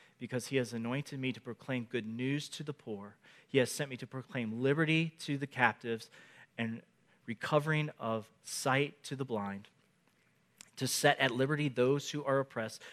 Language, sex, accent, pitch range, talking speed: English, male, American, 140-210 Hz, 170 wpm